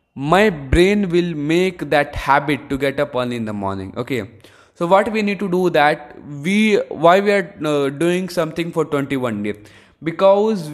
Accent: Indian